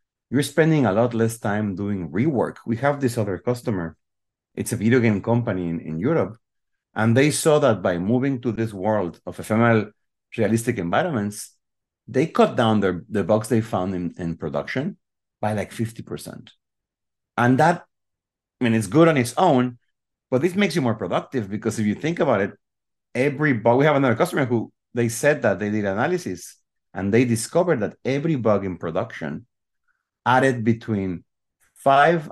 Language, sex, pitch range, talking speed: English, male, 100-125 Hz, 175 wpm